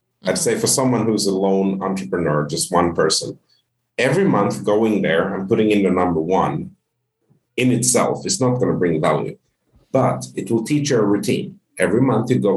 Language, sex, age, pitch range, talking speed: English, male, 50-69, 95-125 Hz, 190 wpm